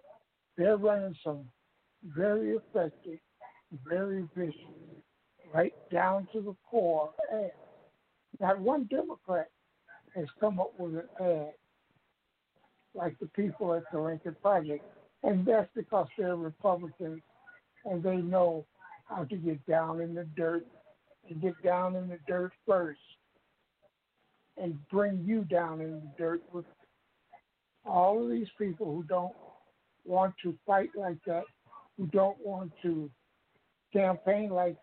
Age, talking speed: 60-79, 135 wpm